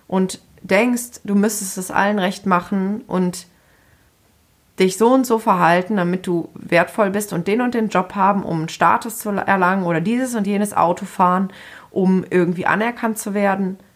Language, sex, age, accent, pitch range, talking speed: German, female, 30-49, German, 170-205 Hz, 170 wpm